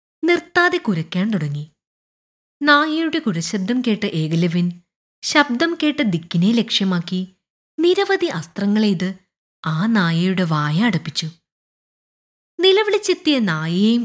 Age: 20-39